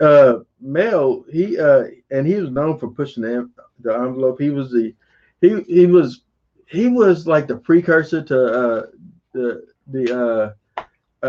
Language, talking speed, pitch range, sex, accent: English, 150 wpm, 125-160 Hz, male, American